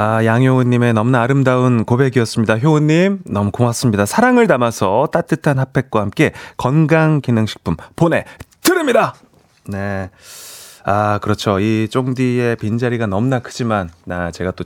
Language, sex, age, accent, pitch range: Korean, male, 30-49, native, 100-130 Hz